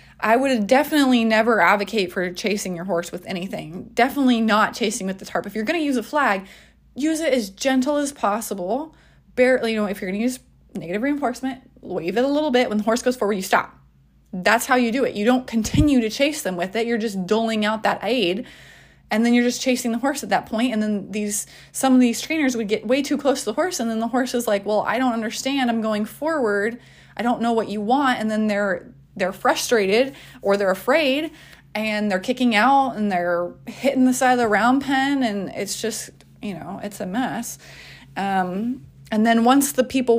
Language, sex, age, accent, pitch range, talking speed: English, female, 20-39, American, 205-255 Hz, 220 wpm